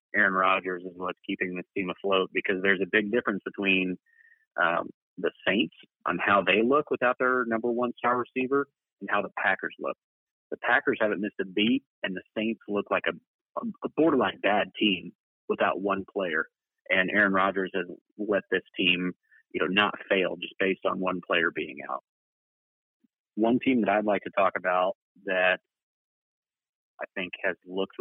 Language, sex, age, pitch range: English, male, 30-49, 95-120 Hz